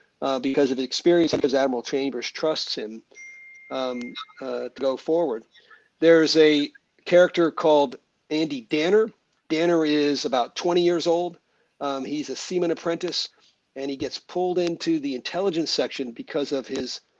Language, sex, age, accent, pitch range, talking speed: English, male, 50-69, American, 135-165 Hz, 150 wpm